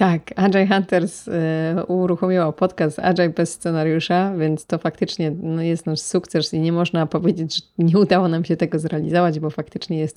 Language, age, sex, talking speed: Polish, 20-39, female, 175 wpm